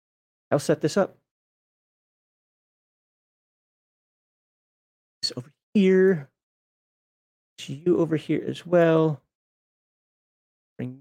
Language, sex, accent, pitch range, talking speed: English, male, American, 145-220 Hz, 75 wpm